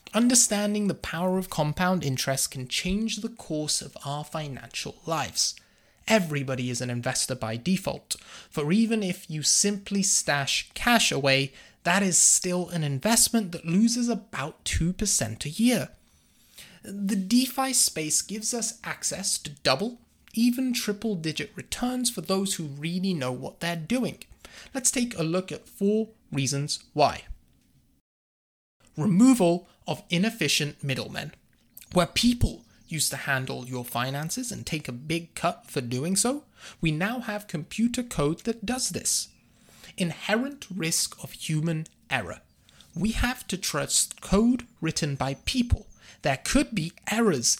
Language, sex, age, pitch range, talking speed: English, male, 20-39, 150-225 Hz, 140 wpm